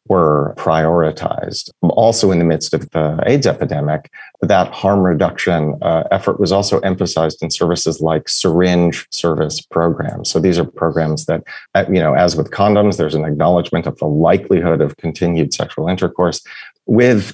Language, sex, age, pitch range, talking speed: English, male, 30-49, 80-95 Hz, 150 wpm